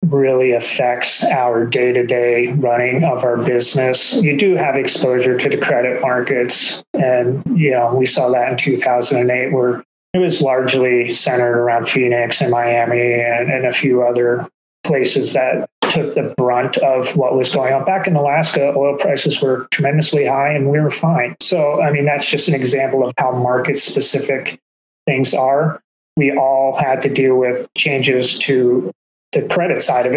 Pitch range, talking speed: 125-145 Hz, 175 wpm